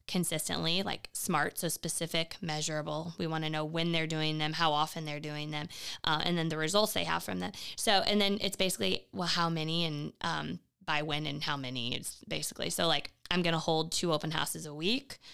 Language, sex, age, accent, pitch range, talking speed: English, female, 20-39, American, 155-200 Hz, 215 wpm